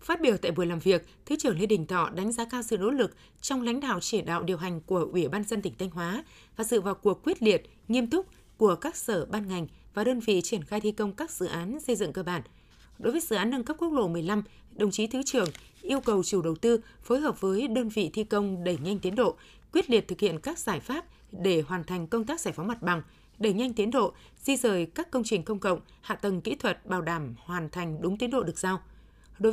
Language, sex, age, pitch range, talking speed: Vietnamese, female, 20-39, 185-235 Hz, 260 wpm